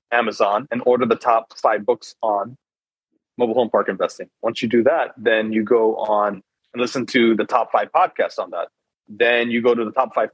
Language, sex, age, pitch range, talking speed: English, male, 30-49, 115-135 Hz, 210 wpm